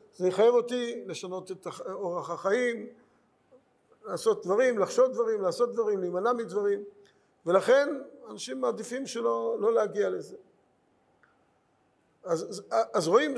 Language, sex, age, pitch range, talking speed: Hebrew, male, 50-69, 170-275 Hz, 115 wpm